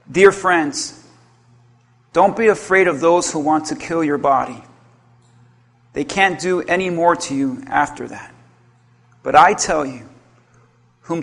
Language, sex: English, male